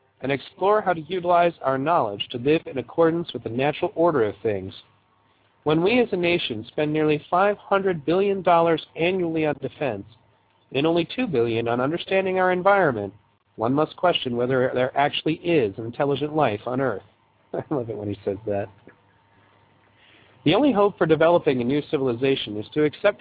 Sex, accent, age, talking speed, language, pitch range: male, American, 40-59, 180 wpm, English, 115-170 Hz